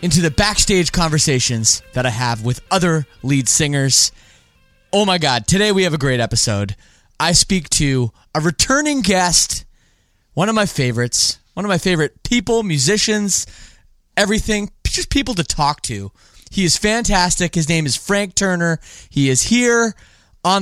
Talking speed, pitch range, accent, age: 155 wpm, 125-190 Hz, American, 20-39